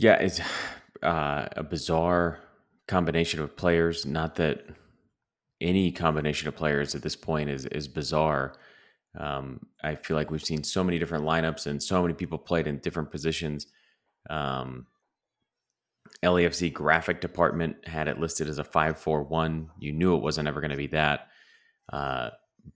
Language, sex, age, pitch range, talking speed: English, male, 30-49, 75-85 Hz, 155 wpm